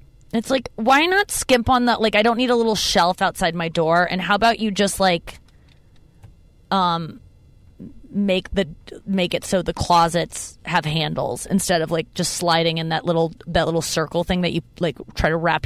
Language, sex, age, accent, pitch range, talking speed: English, female, 20-39, American, 170-220 Hz, 195 wpm